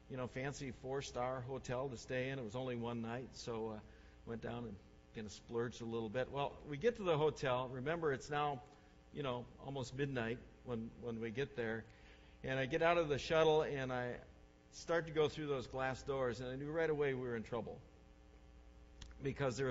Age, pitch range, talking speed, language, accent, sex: 50-69, 115-155 Hz, 210 wpm, English, American, male